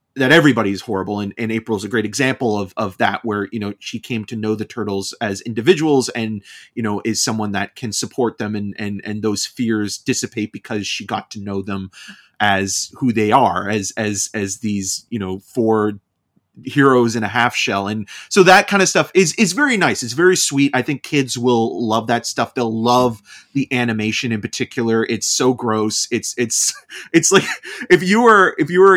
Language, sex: English, male